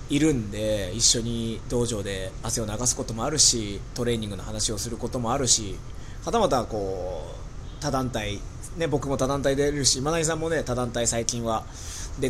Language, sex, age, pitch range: Japanese, male, 20-39, 105-140 Hz